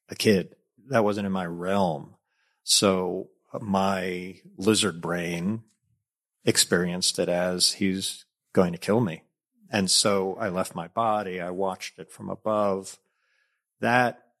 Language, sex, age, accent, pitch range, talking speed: English, male, 50-69, American, 90-110 Hz, 130 wpm